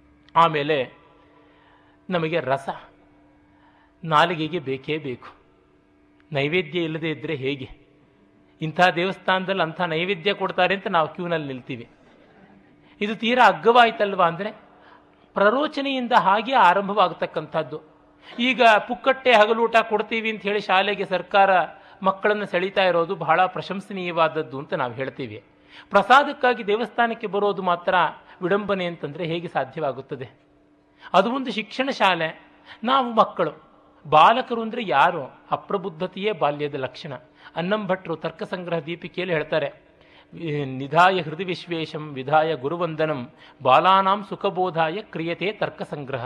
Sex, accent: male, native